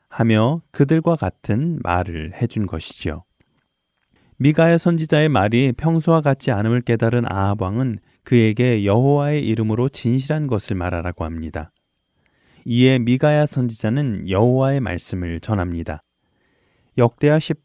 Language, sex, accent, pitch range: Korean, male, native, 95-135 Hz